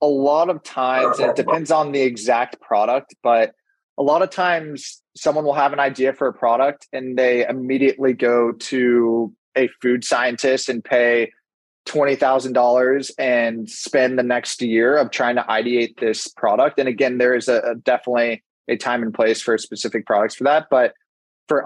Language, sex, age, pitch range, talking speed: English, male, 20-39, 120-140 Hz, 175 wpm